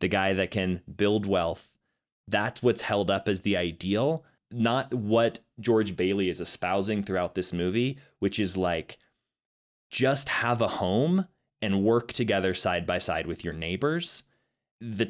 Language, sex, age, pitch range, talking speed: English, male, 20-39, 95-115 Hz, 155 wpm